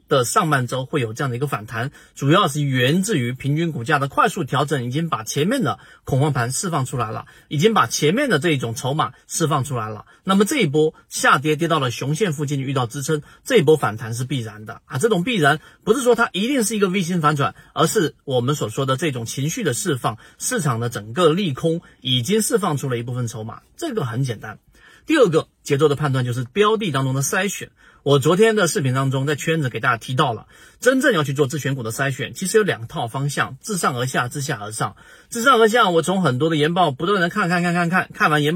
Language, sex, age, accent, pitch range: Chinese, male, 30-49, native, 130-170 Hz